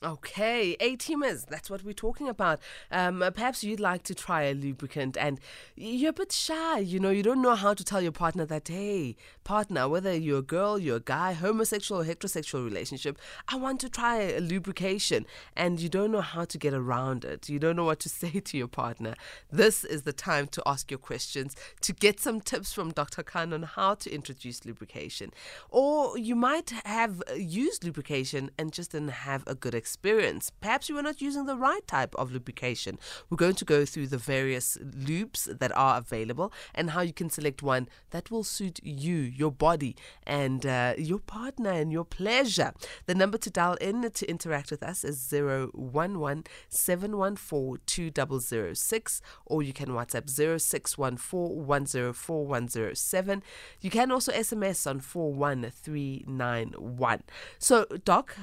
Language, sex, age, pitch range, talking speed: English, female, 20-39, 140-205 Hz, 170 wpm